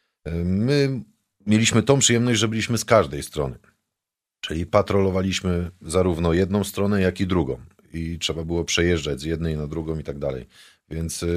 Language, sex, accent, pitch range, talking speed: Polish, male, native, 80-100 Hz, 155 wpm